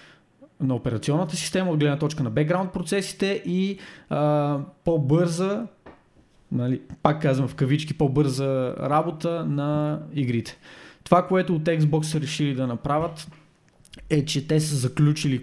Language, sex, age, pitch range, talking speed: Bulgarian, male, 20-39, 135-155 Hz, 130 wpm